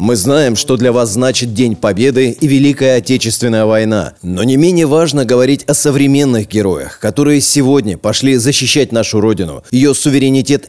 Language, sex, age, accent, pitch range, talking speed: Russian, male, 30-49, native, 110-140 Hz, 155 wpm